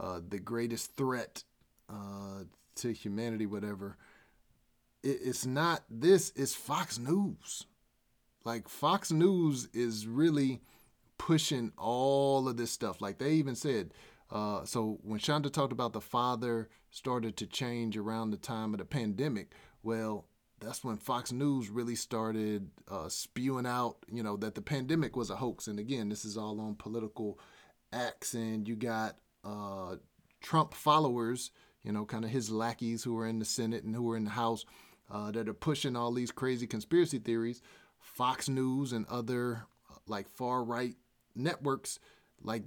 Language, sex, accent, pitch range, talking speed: English, male, American, 110-130 Hz, 160 wpm